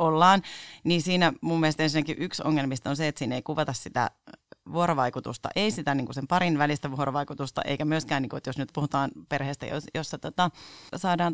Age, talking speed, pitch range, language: 30-49, 190 wpm, 140-190 Hz, Finnish